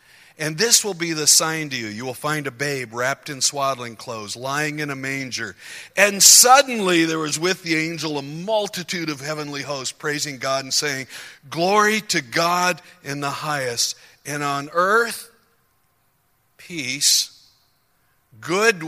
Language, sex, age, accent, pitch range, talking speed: English, male, 60-79, American, 125-170 Hz, 155 wpm